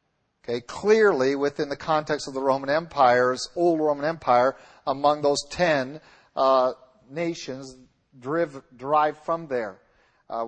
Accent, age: American, 50-69